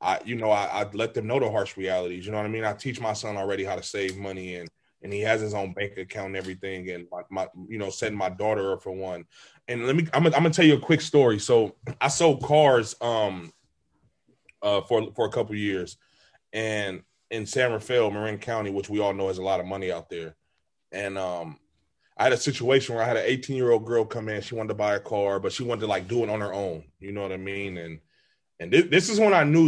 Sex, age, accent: male, 20-39, American